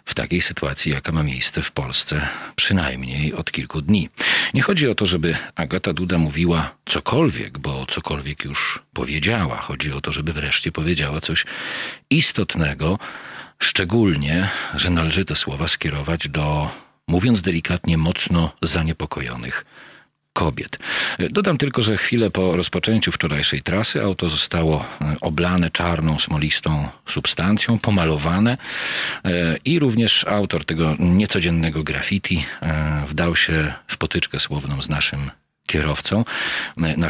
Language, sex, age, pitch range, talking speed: Polish, male, 40-59, 75-95 Hz, 120 wpm